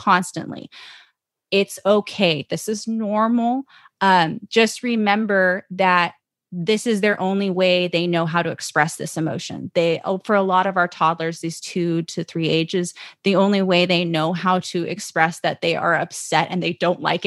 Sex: female